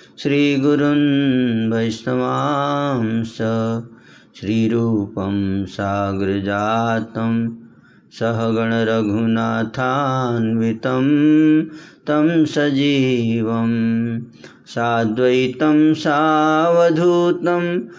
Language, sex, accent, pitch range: Hindi, male, native, 115-150 Hz